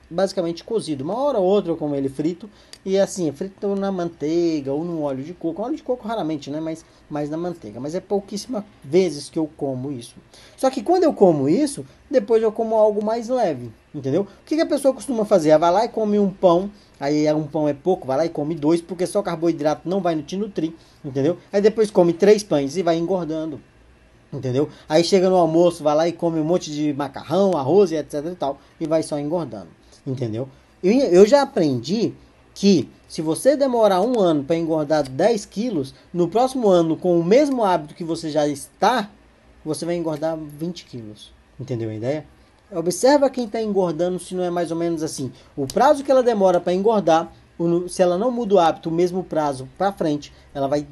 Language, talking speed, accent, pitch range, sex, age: Portuguese, 210 wpm, Brazilian, 150-200 Hz, male, 20-39